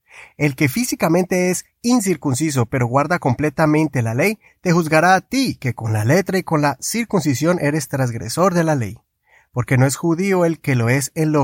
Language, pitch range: Spanish, 135-180 Hz